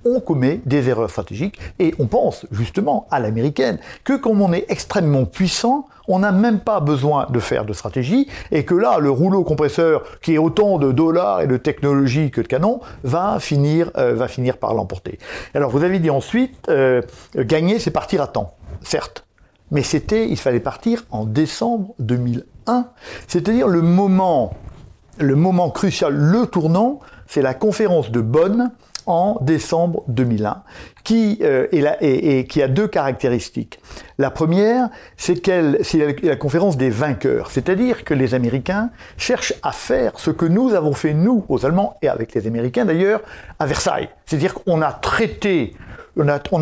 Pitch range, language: 130-200 Hz, French